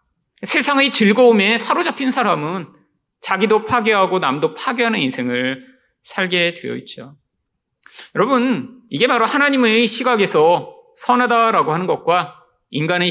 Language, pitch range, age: Korean, 190-250 Hz, 30-49